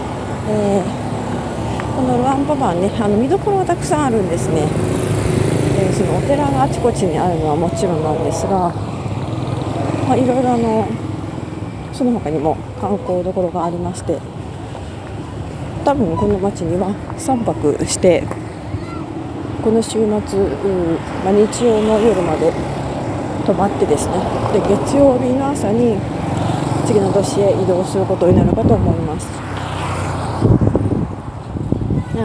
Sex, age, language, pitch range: female, 40-59, Japanese, 120-165 Hz